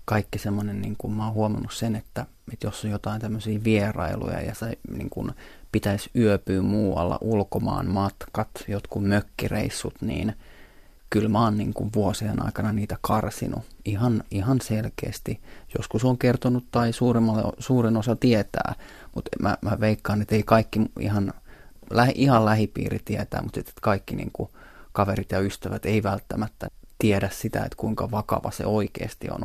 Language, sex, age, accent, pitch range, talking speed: Finnish, male, 30-49, native, 105-115 Hz, 130 wpm